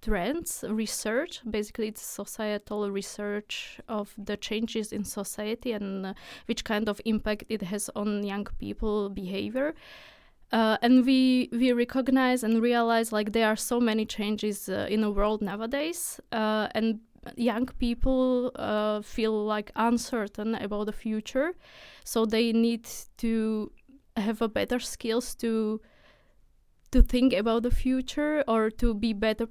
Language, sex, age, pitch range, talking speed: English, female, 20-39, 210-240 Hz, 140 wpm